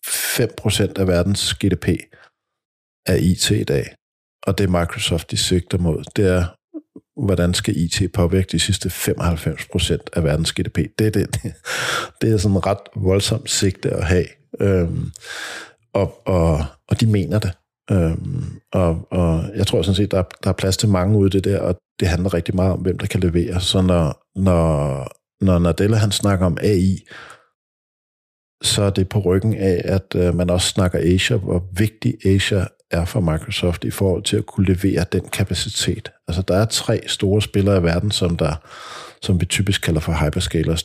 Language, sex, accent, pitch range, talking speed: English, male, Danish, 90-105 Hz, 180 wpm